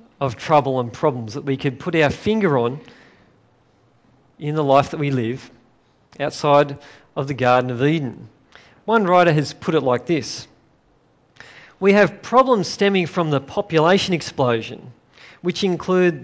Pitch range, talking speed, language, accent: 135-180 Hz, 150 wpm, English, Australian